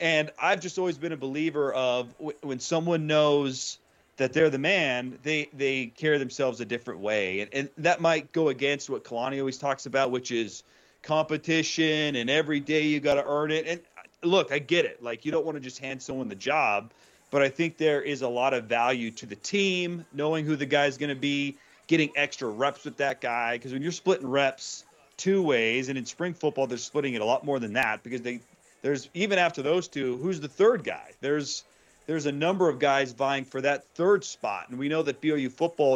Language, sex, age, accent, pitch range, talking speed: English, male, 30-49, American, 125-155 Hz, 220 wpm